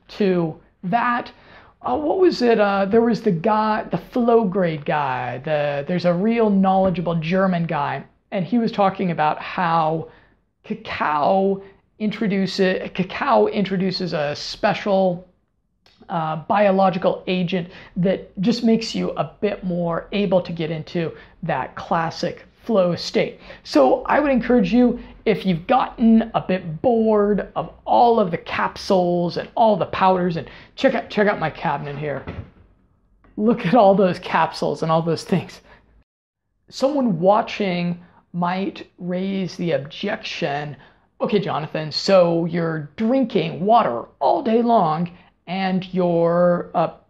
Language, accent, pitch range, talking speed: English, American, 170-215 Hz, 135 wpm